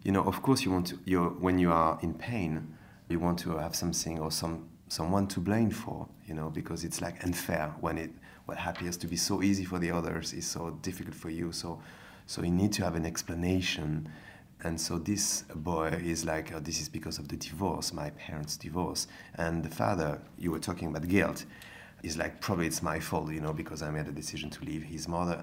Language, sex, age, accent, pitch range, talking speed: English, male, 30-49, French, 80-95 Hz, 225 wpm